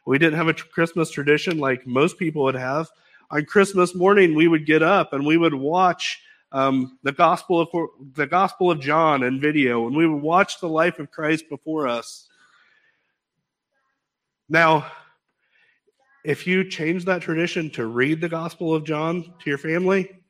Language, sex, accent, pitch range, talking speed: English, male, American, 145-180 Hz, 165 wpm